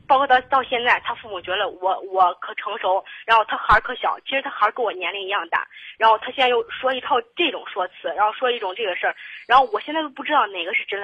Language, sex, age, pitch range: Chinese, female, 20-39, 200-265 Hz